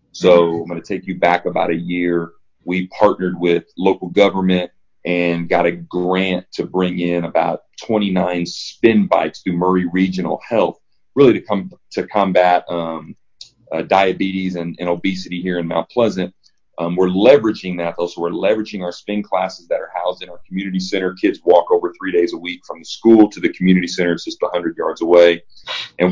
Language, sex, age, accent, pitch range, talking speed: English, male, 40-59, American, 85-95 Hz, 190 wpm